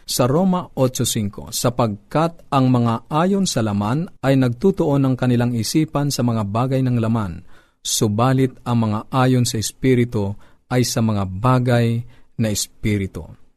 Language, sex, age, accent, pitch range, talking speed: Filipino, male, 50-69, native, 115-140 Hz, 135 wpm